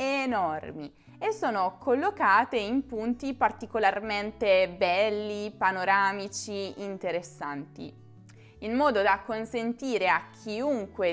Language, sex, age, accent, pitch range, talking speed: Italian, female, 20-39, native, 190-265 Hz, 85 wpm